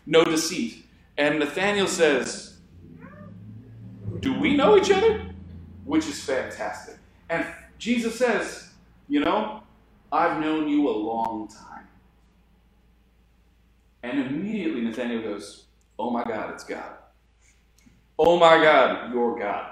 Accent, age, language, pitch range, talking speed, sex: American, 40-59, English, 120-190 Hz, 115 wpm, male